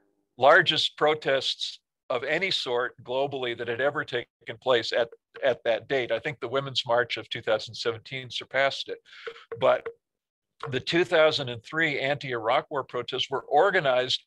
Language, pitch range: English, 120-155 Hz